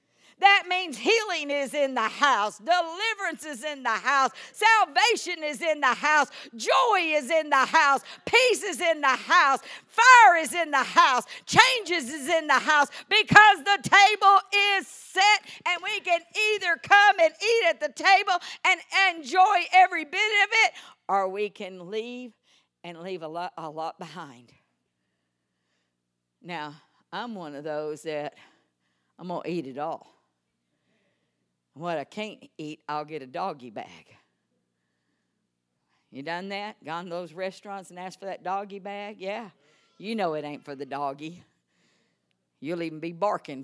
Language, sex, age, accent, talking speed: English, female, 50-69, American, 155 wpm